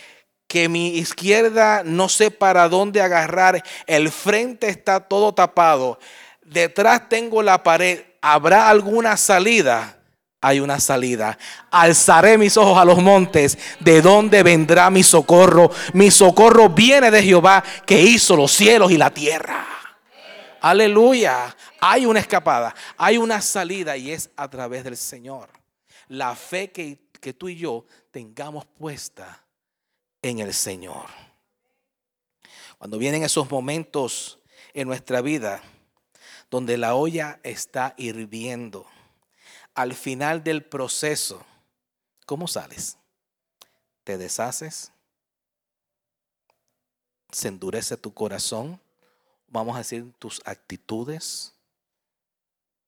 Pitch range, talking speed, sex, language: 130-195 Hz, 115 wpm, male, English